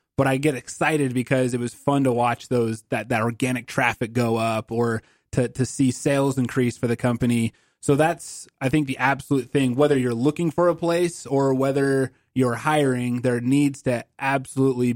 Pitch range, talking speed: 120-140 Hz, 190 wpm